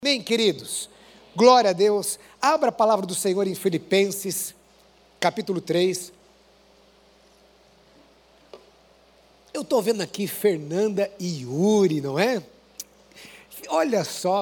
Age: 60-79